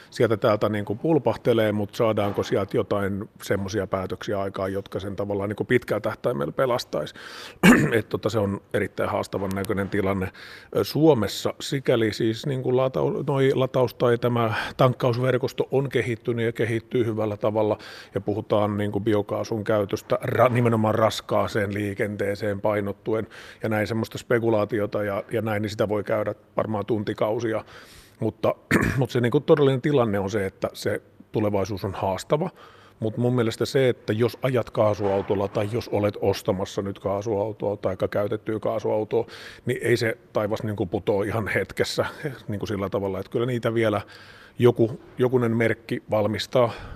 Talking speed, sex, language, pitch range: 140 wpm, male, Finnish, 105-120 Hz